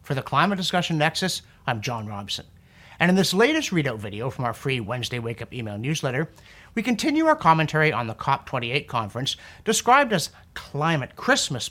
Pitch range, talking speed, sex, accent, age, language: 125-190 Hz, 170 wpm, male, American, 50-69, English